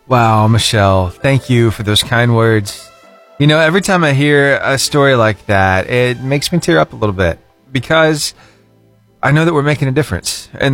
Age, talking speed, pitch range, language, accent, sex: 30-49, 195 wpm, 120-170 Hz, English, American, male